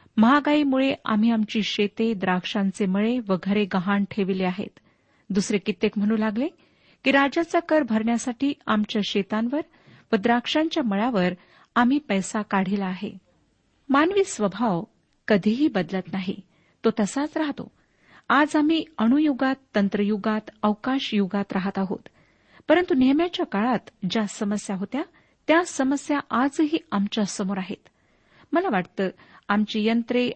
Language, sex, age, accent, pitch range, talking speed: Marathi, female, 40-59, native, 200-270 Hz, 110 wpm